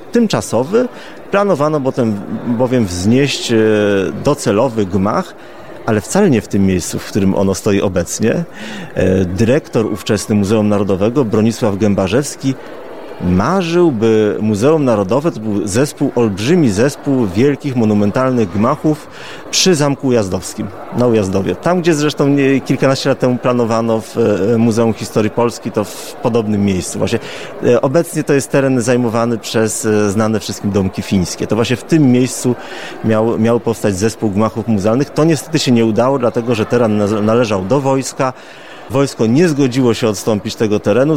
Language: Polish